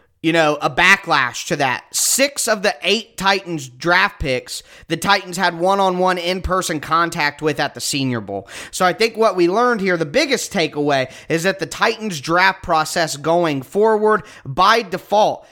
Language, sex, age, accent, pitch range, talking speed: English, male, 20-39, American, 155-190 Hz, 170 wpm